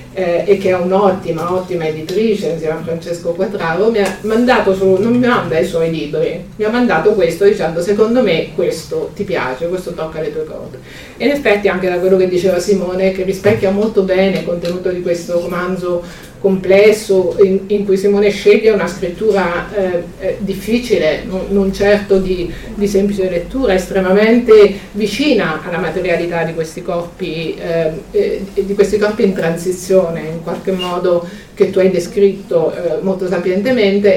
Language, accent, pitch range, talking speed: Italian, native, 170-200 Hz, 165 wpm